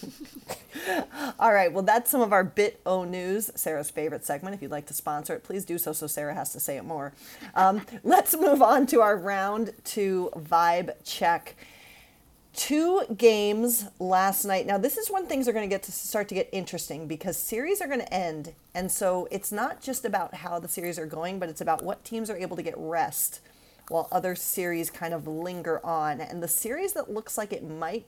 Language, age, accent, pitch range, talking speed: English, 40-59, American, 165-220 Hz, 210 wpm